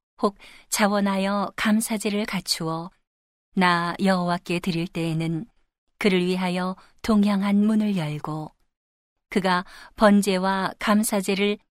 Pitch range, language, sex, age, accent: 175-210 Hz, Korean, female, 40-59, native